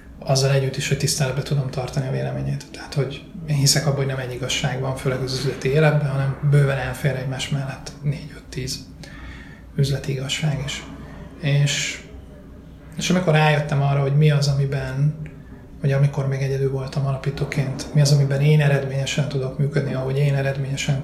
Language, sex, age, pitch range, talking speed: Hungarian, male, 30-49, 135-145 Hz, 165 wpm